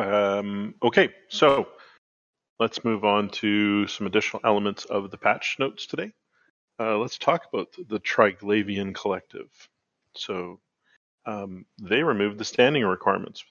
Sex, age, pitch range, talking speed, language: male, 40-59, 100-115 Hz, 130 wpm, English